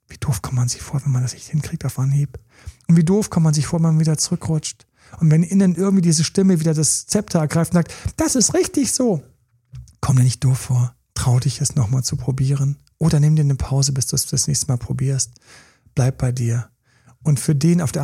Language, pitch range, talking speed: German, 120-150 Hz, 235 wpm